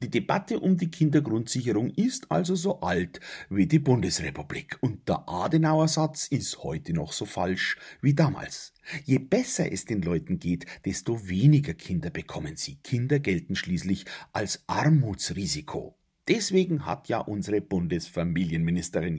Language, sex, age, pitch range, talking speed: German, male, 50-69, 105-165 Hz, 135 wpm